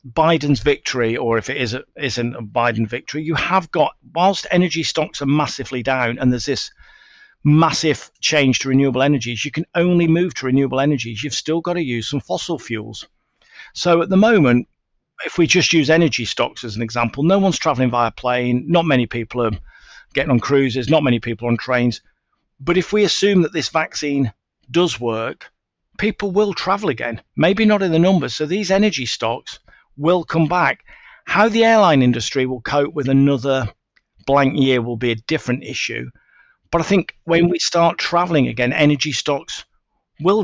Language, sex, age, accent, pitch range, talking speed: English, male, 50-69, British, 125-170 Hz, 185 wpm